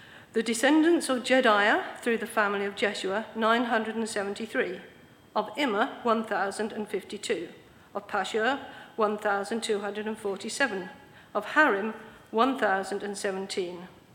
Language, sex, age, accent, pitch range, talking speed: English, female, 50-69, British, 200-245 Hz, 80 wpm